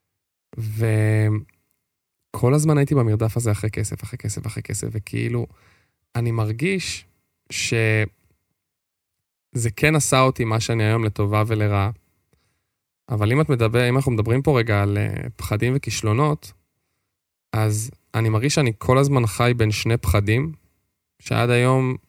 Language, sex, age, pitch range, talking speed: Hebrew, male, 10-29, 105-125 Hz, 130 wpm